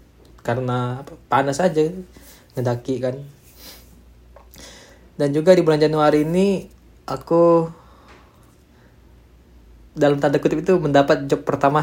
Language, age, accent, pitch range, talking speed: Indonesian, 20-39, native, 120-145 Hz, 95 wpm